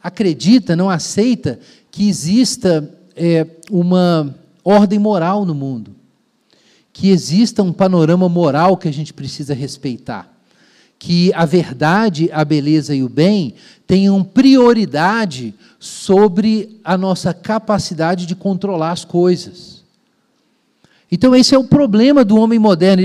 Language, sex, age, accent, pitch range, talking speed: Portuguese, male, 40-59, Brazilian, 170-220 Hz, 120 wpm